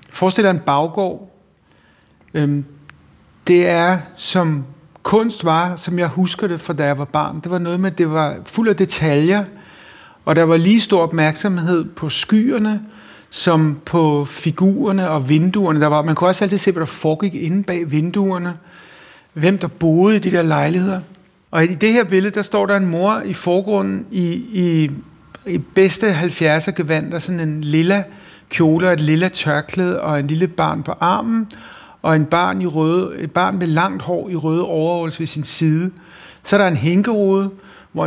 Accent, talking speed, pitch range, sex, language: native, 180 wpm, 155-185 Hz, male, Danish